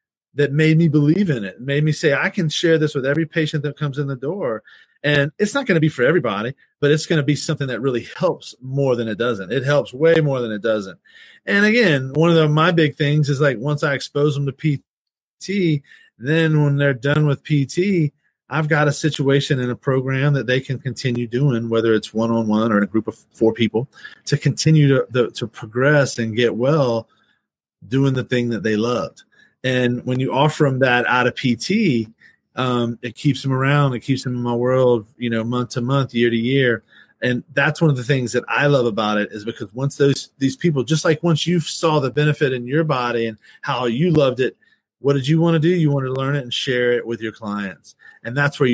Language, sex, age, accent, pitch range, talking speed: English, male, 30-49, American, 120-150 Hz, 230 wpm